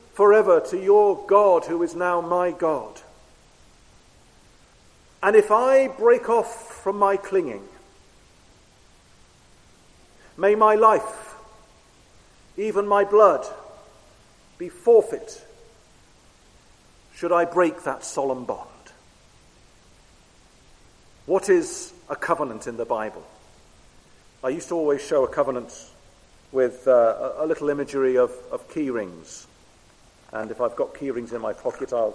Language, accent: English, British